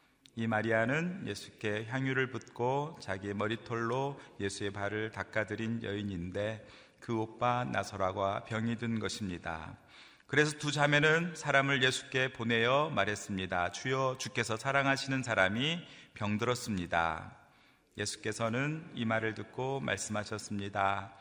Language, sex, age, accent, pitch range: Korean, male, 40-59, native, 100-125 Hz